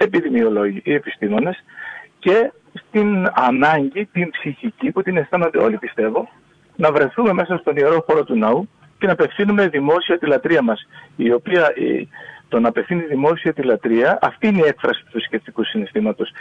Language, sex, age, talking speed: Greek, male, 50-69, 150 wpm